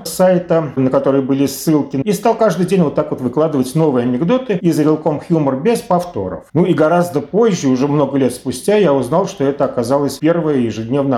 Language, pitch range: Russian, 125-170 Hz